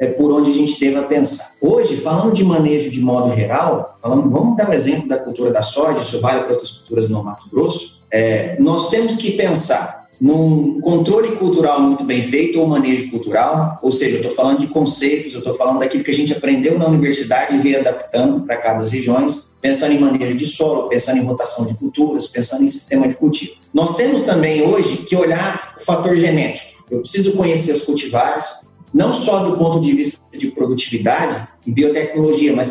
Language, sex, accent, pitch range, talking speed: Portuguese, male, Brazilian, 140-195 Hz, 205 wpm